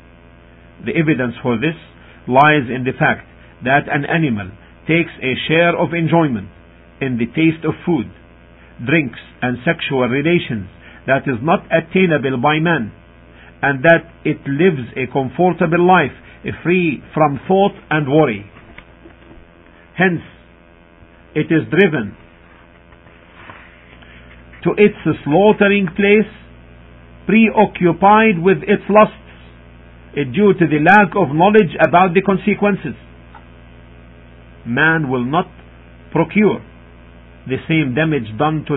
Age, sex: 50-69, male